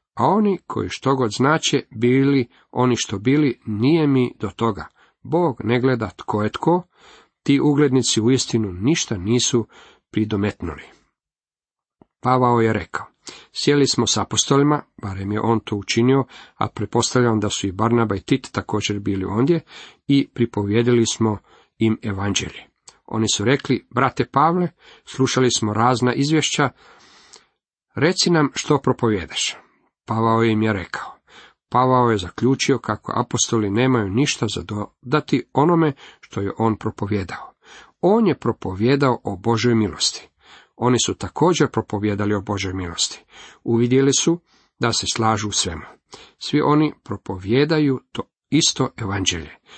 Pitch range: 105-135 Hz